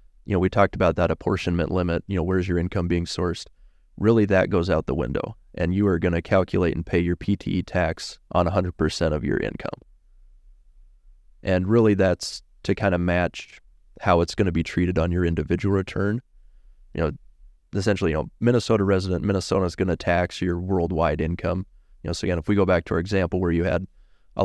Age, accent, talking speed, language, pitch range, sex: 20-39, American, 205 wpm, English, 85-95 Hz, male